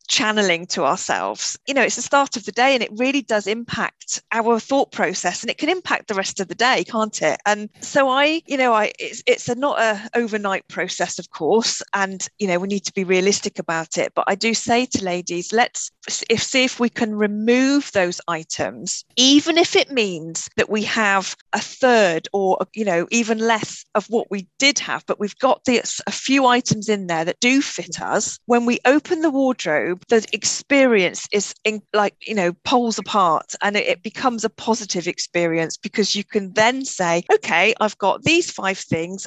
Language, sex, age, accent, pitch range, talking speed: English, female, 40-59, British, 190-245 Hz, 205 wpm